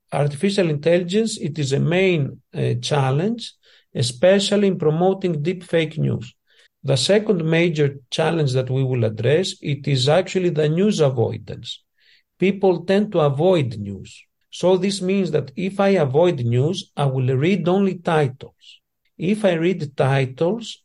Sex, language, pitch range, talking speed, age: male, Ukrainian, 130-185 Hz, 145 wpm, 50-69